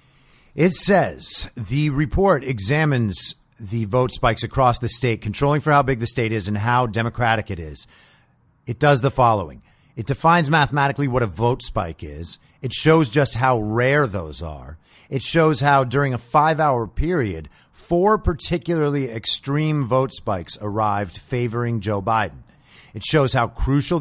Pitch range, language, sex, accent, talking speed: 110-155 Hz, English, male, American, 155 wpm